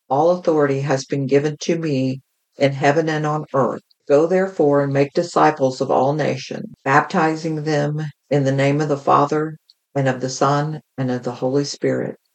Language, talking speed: English, 180 wpm